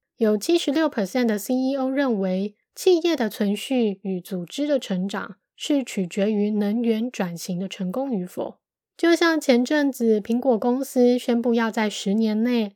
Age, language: 20-39, Chinese